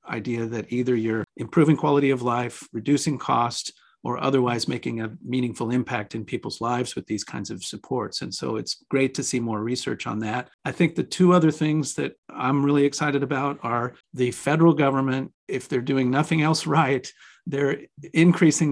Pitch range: 120-145 Hz